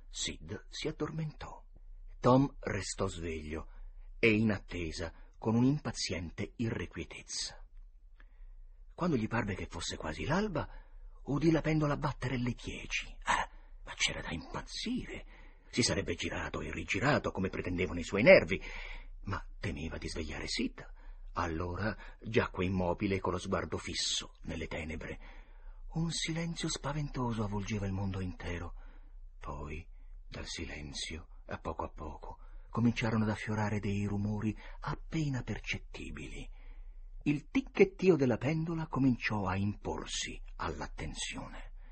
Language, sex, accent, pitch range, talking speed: Italian, male, native, 85-120 Hz, 120 wpm